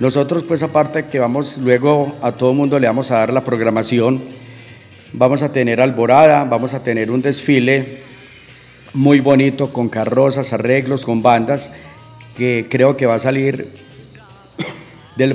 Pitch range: 120-140 Hz